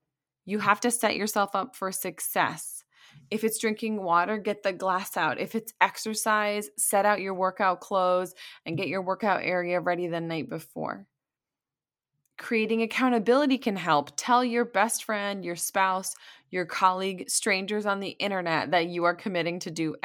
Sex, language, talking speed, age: female, English, 165 wpm, 20-39